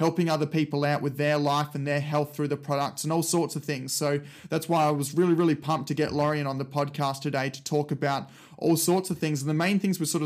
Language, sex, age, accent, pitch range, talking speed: English, male, 20-39, Australian, 145-160 Hz, 270 wpm